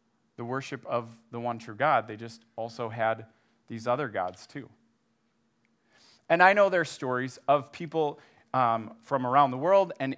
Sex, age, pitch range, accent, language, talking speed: male, 30-49, 115-150 Hz, American, English, 170 wpm